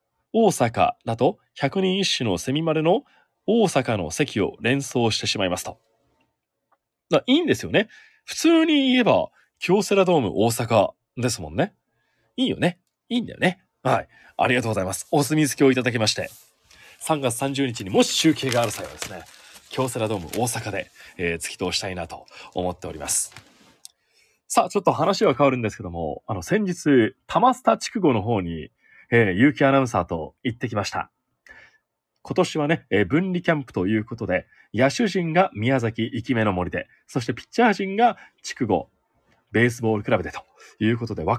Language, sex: Japanese, male